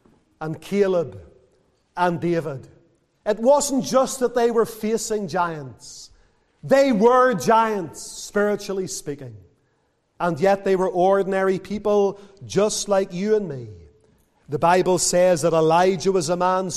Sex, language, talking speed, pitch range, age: male, English, 130 wpm, 160-210 Hz, 40-59